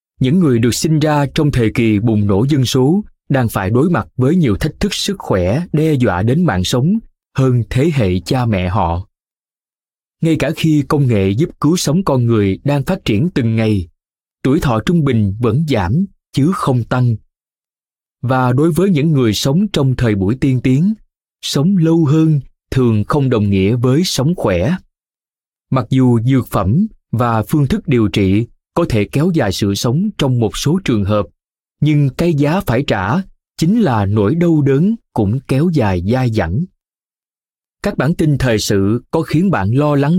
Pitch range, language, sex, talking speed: 110-160 Hz, Vietnamese, male, 185 wpm